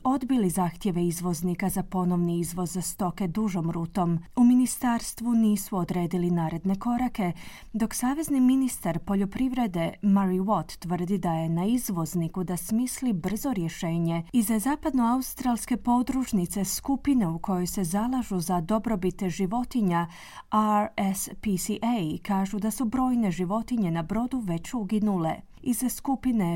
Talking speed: 125 wpm